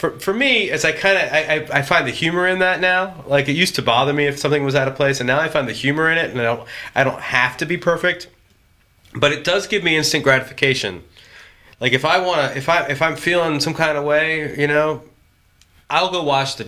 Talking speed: 255 wpm